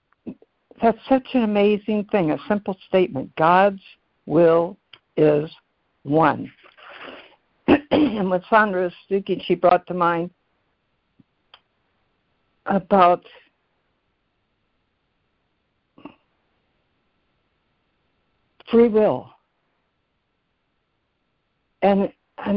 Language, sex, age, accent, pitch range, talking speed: English, female, 60-79, American, 155-205 Hz, 70 wpm